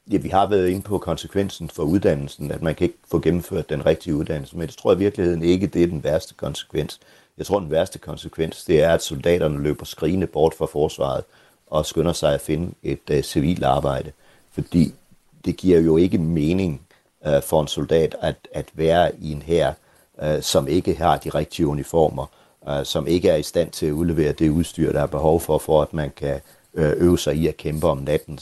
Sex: male